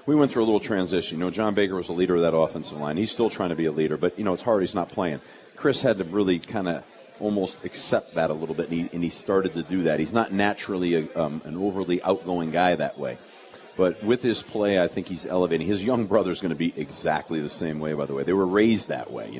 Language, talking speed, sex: English, 280 wpm, male